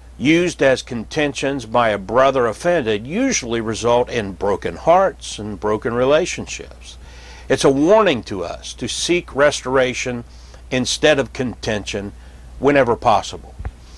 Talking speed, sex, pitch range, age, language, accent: 120 wpm, male, 90-135 Hz, 60-79, English, American